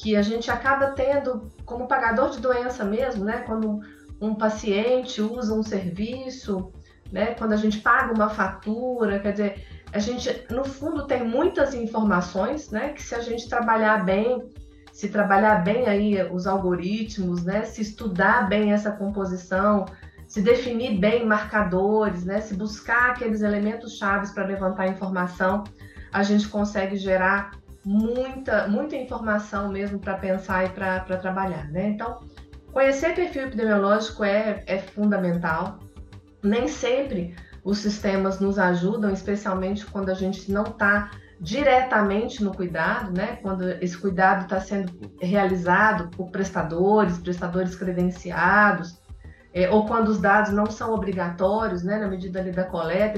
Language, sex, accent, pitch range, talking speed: Portuguese, female, Brazilian, 190-225 Hz, 140 wpm